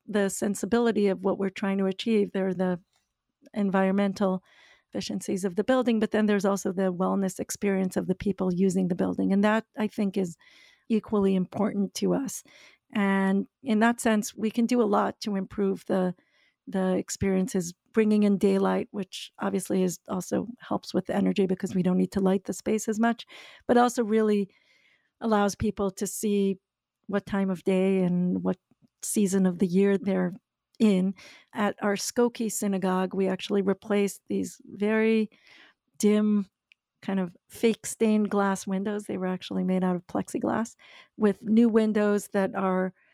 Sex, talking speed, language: female, 165 wpm, English